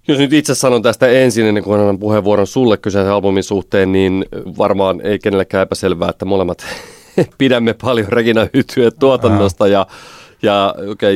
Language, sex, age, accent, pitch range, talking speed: Finnish, male, 30-49, native, 90-110 Hz, 150 wpm